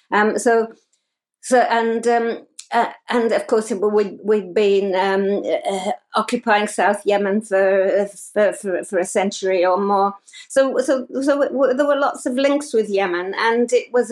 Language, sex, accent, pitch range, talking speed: English, female, British, 200-245 Hz, 170 wpm